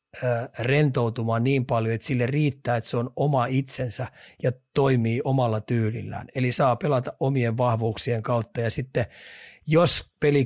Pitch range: 115-135 Hz